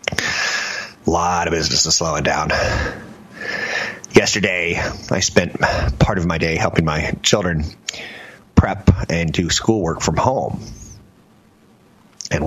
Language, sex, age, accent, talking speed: English, male, 30-49, American, 115 wpm